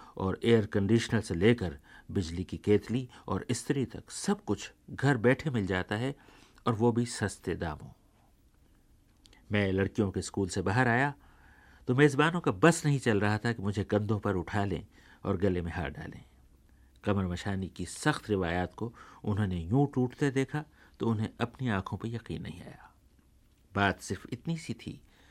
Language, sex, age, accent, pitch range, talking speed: Hindi, male, 50-69, native, 90-125 Hz, 170 wpm